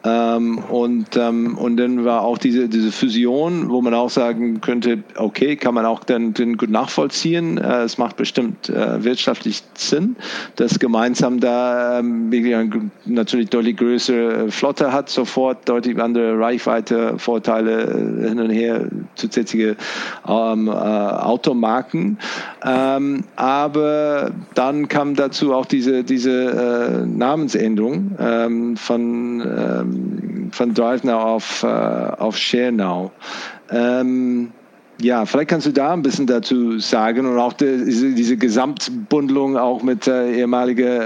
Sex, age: male, 50-69